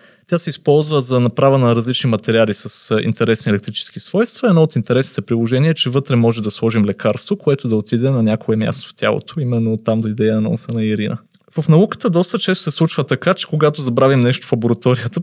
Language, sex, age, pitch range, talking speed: Bulgarian, male, 20-39, 115-145 Hz, 205 wpm